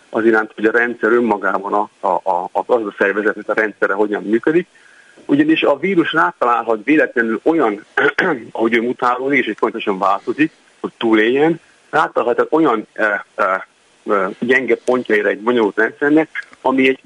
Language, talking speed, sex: Hungarian, 150 wpm, male